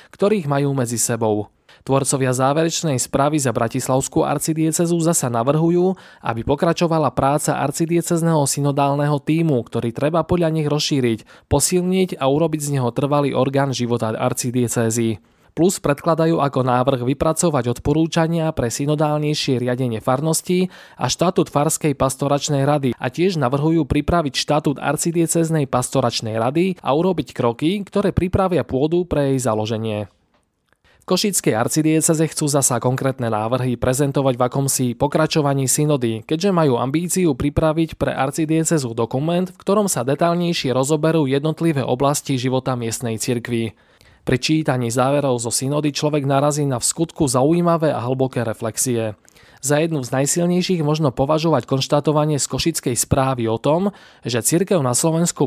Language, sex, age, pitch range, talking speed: Slovak, male, 20-39, 125-160 Hz, 130 wpm